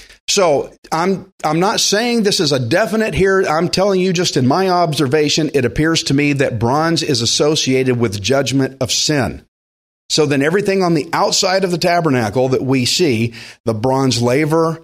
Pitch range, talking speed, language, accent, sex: 125-175 Hz, 180 wpm, English, American, male